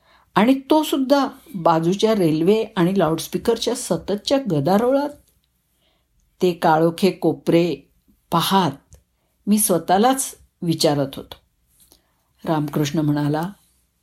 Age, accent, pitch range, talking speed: 50-69, native, 140-220 Hz, 80 wpm